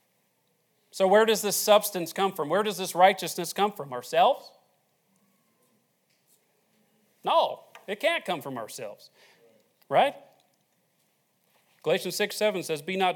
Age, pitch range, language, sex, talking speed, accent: 40-59, 140-195 Hz, English, male, 125 wpm, American